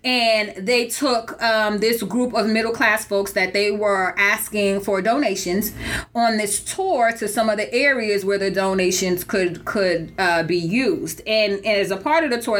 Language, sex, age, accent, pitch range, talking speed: English, female, 30-49, American, 200-265 Hz, 185 wpm